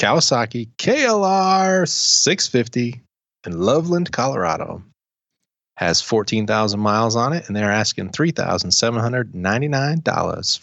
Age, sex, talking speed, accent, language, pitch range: 30-49, male, 85 wpm, American, English, 95-120 Hz